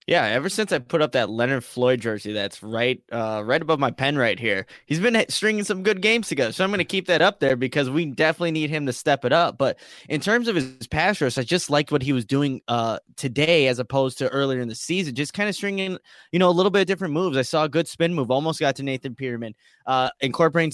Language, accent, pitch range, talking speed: English, American, 130-165 Hz, 265 wpm